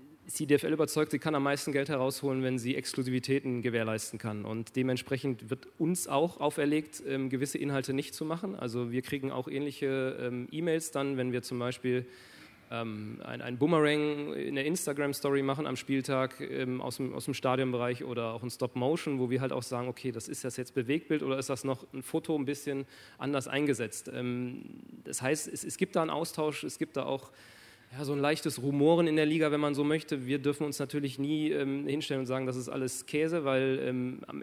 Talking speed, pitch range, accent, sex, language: 205 wpm, 130-145 Hz, German, male, German